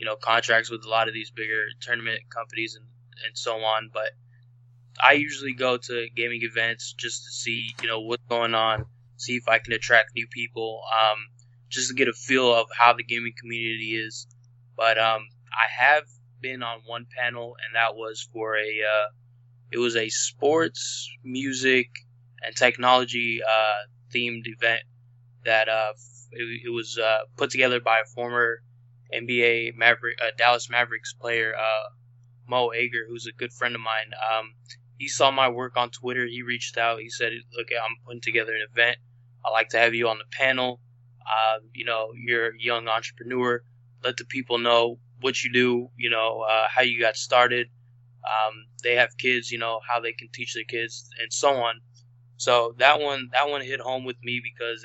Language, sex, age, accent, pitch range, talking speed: English, male, 10-29, American, 115-120 Hz, 190 wpm